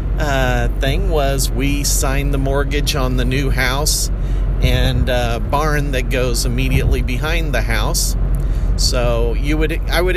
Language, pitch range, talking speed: English, 115-145 Hz, 150 wpm